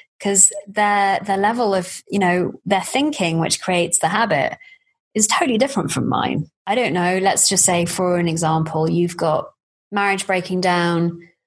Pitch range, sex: 170-205 Hz, female